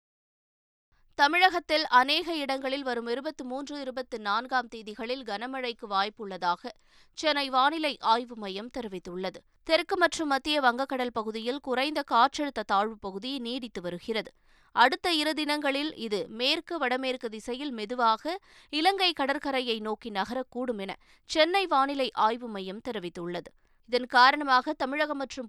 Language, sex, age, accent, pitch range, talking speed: Tamil, female, 20-39, native, 215-275 Hz, 115 wpm